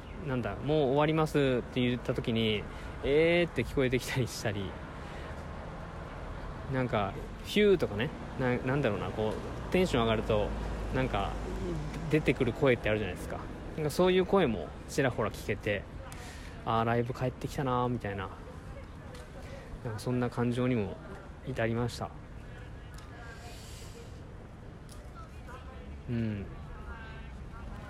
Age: 20-39